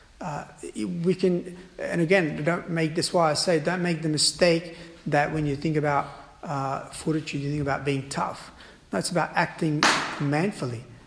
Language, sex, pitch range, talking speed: English, male, 150-185 Hz, 175 wpm